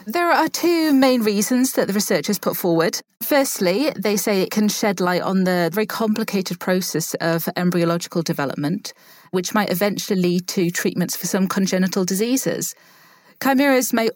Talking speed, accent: 155 wpm, British